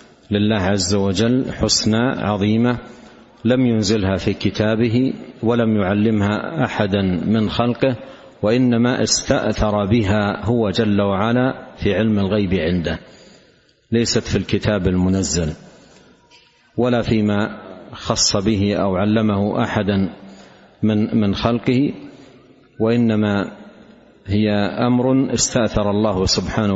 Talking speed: 100 wpm